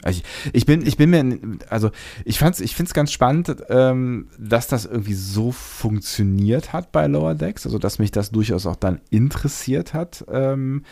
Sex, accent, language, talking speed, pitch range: male, German, German, 185 wpm, 95-120 Hz